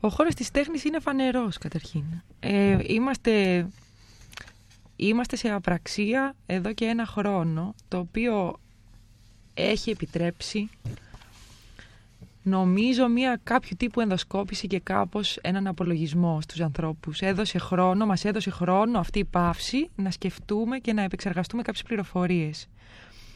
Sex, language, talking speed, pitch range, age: female, Greek, 120 wpm, 155-230 Hz, 20-39